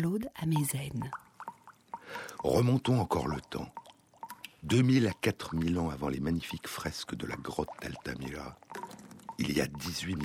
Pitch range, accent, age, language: 75-115 Hz, French, 60-79, French